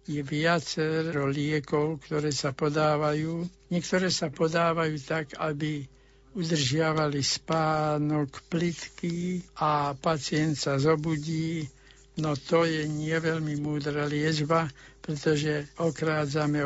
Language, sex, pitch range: Slovak, male, 140-170 Hz